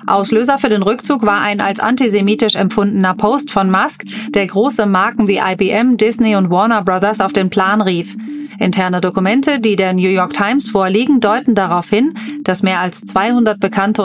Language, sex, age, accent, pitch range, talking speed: German, female, 30-49, German, 195-230 Hz, 175 wpm